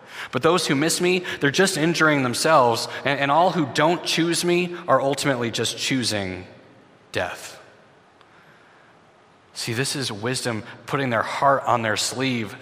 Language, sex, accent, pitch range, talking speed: English, male, American, 110-140 Hz, 145 wpm